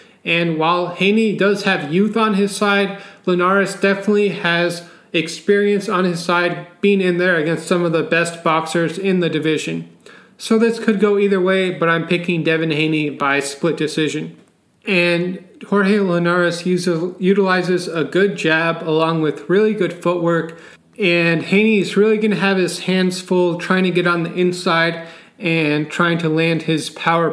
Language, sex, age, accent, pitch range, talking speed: English, male, 30-49, American, 165-195 Hz, 165 wpm